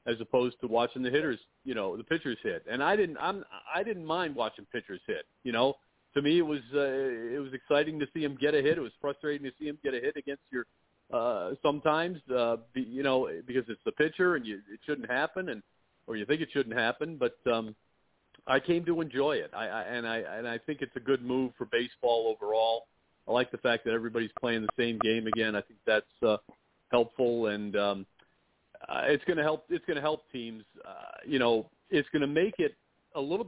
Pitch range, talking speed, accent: 115-145 Hz, 230 wpm, American